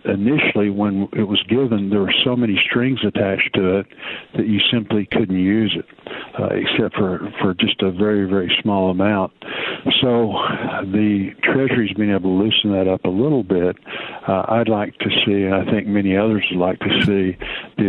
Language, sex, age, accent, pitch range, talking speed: English, male, 60-79, American, 95-110 Hz, 190 wpm